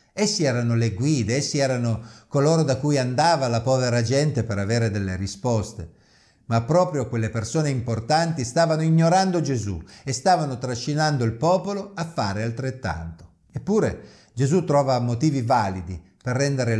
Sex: male